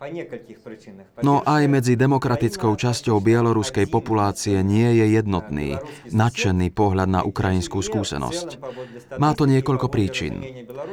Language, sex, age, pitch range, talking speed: Slovak, male, 30-49, 100-140 Hz, 105 wpm